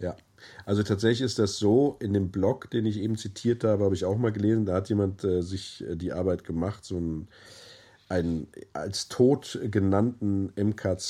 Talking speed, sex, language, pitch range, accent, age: 185 wpm, male, German, 90-105 Hz, German, 50-69